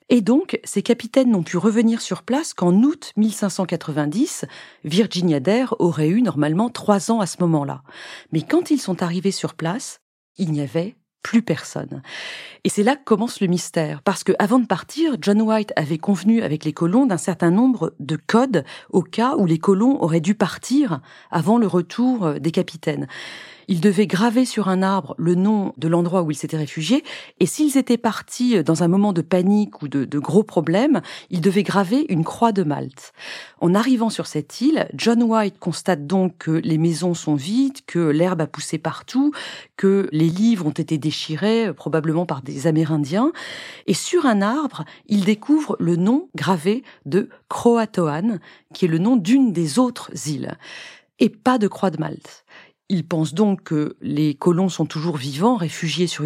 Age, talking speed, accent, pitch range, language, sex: 40-59, 180 wpm, French, 165-230 Hz, French, female